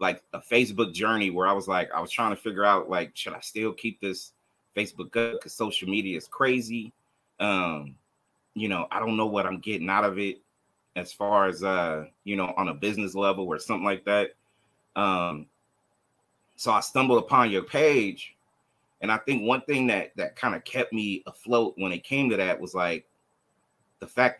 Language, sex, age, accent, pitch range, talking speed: English, male, 30-49, American, 95-120 Hz, 200 wpm